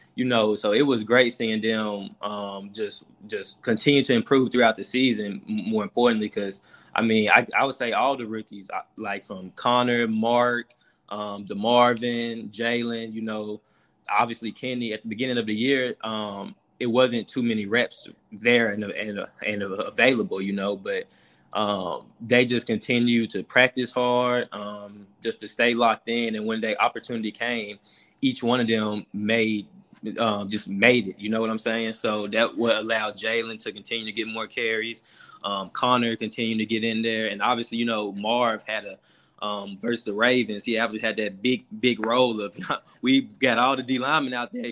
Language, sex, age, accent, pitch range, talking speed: English, male, 20-39, American, 110-125 Hz, 185 wpm